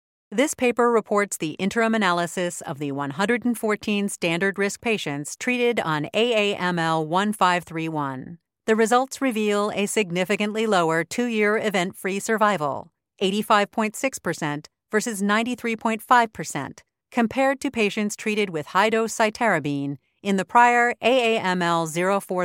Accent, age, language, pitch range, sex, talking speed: American, 40-59, English, 175-235 Hz, female, 100 wpm